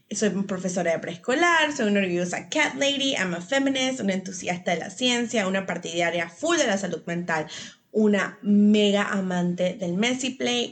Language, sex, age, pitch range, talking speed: Spanish, female, 30-49, 180-255 Hz, 175 wpm